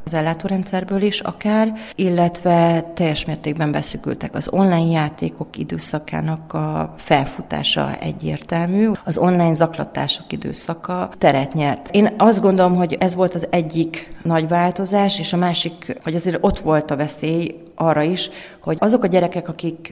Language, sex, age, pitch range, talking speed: Hungarian, female, 30-49, 150-185 Hz, 140 wpm